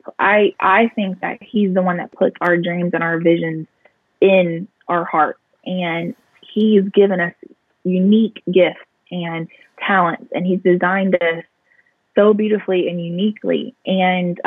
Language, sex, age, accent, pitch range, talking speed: English, female, 20-39, American, 175-200 Hz, 140 wpm